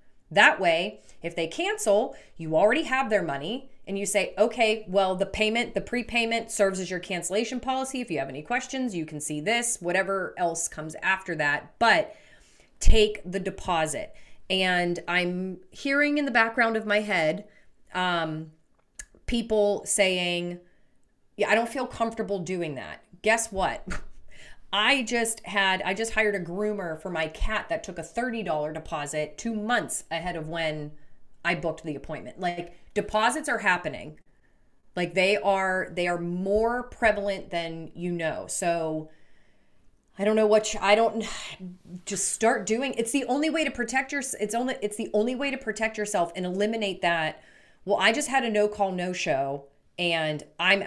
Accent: American